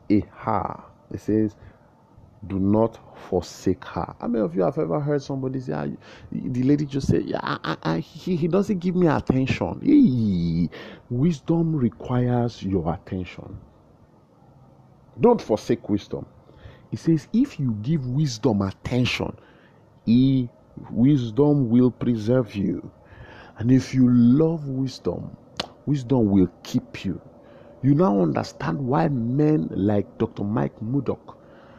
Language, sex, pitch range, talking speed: English, male, 105-145 Hz, 125 wpm